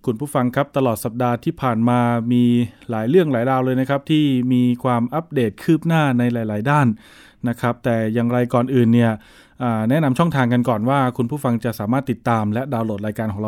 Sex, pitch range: male, 120-145 Hz